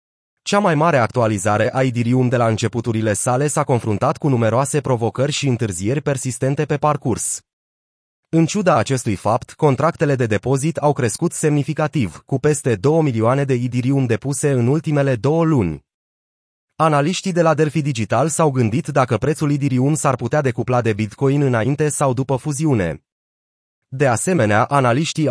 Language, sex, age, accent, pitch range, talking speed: Romanian, male, 30-49, native, 115-150 Hz, 150 wpm